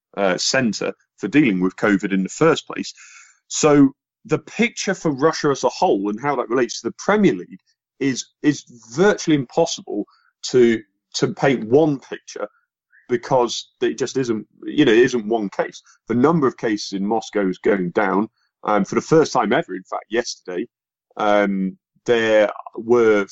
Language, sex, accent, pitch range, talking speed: English, male, British, 105-160 Hz, 170 wpm